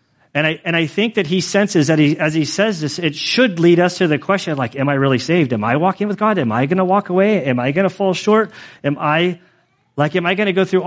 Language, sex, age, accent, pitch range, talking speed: English, male, 40-59, American, 120-160 Hz, 280 wpm